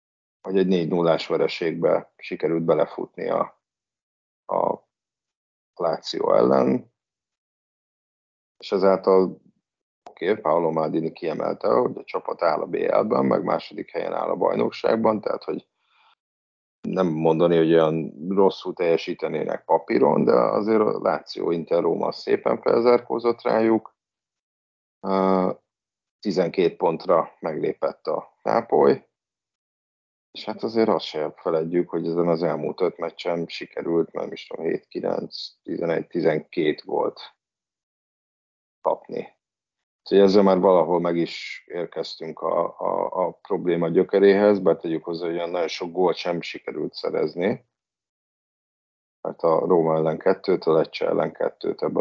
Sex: male